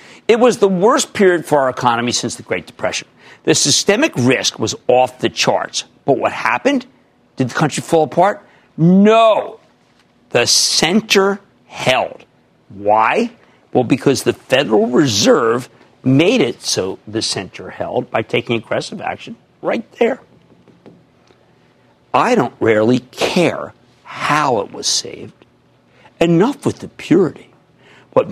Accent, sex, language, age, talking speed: American, male, English, 60-79, 130 wpm